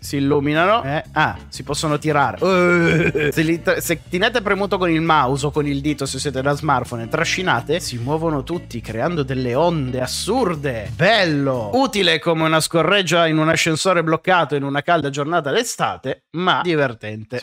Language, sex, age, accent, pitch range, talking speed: Italian, male, 30-49, native, 145-205 Hz, 165 wpm